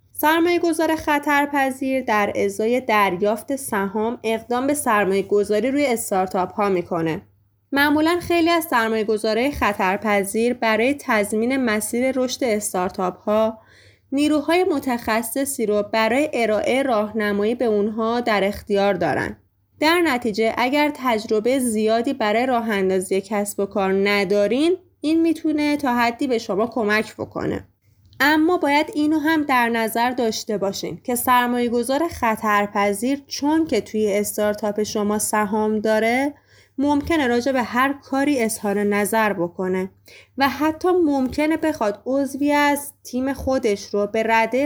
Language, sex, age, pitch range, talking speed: Persian, female, 20-39, 205-275 Hz, 120 wpm